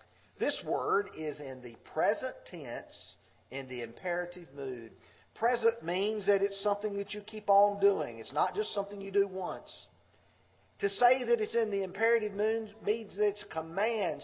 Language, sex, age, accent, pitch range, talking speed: English, male, 40-59, American, 145-225 Hz, 175 wpm